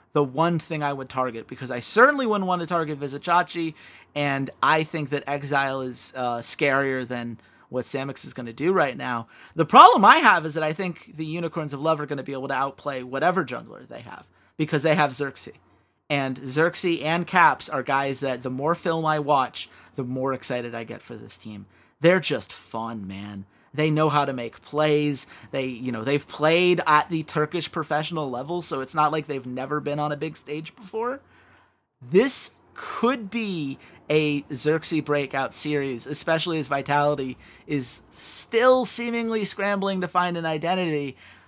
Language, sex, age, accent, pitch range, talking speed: English, male, 30-49, American, 130-165 Hz, 185 wpm